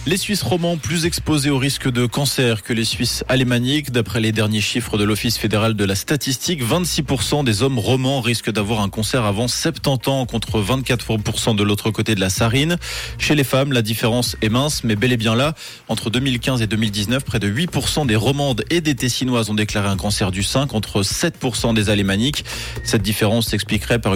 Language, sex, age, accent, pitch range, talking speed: French, male, 20-39, French, 110-130 Hz, 200 wpm